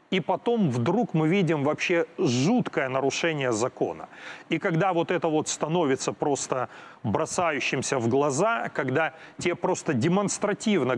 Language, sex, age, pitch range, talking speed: Ukrainian, male, 30-49, 145-180 Hz, 125 wpm